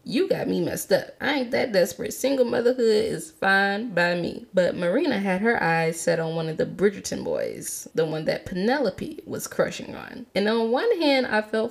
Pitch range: 175-245 Hz